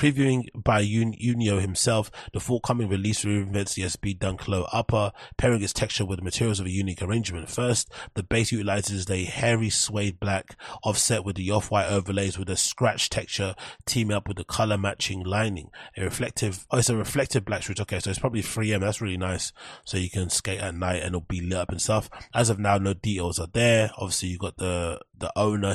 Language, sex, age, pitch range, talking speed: English, male, 20-39, 90-105 Hz, 205 wpm